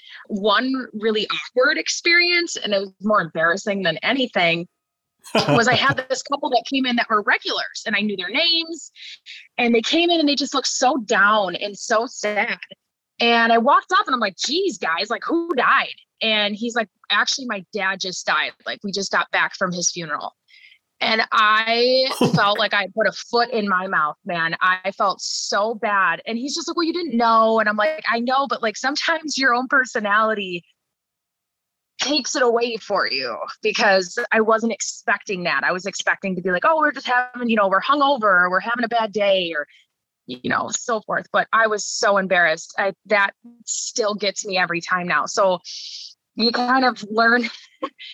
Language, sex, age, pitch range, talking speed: English, female, 20-39, 195-260 Hz, 195 wpm